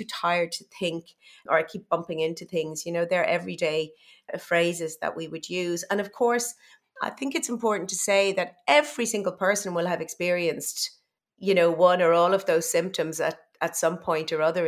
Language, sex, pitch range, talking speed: English, female, 160-195 Hz, 195 wpm